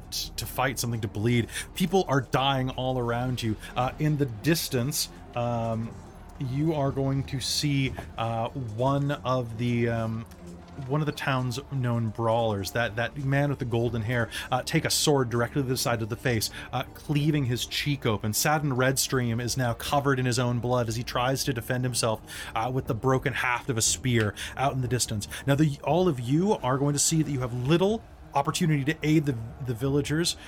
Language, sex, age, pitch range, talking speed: English, male, 30-49, 115-145 Hz, 200 wpm